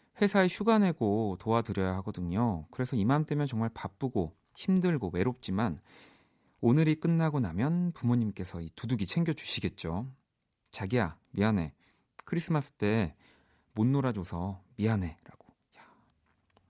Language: Korean